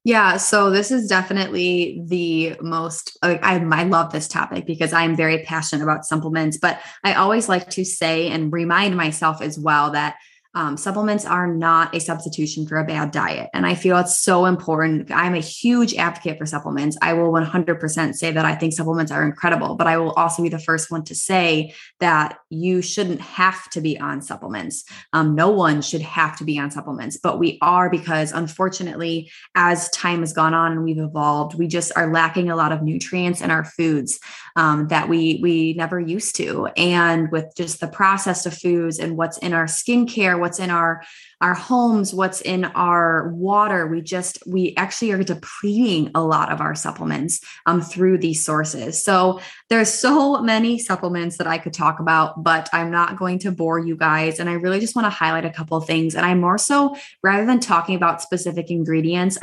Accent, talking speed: American, 195 wpm